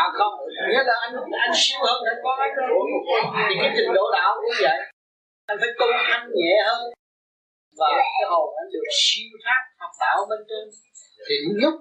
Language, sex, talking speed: Vietnamese, male, 190 wpm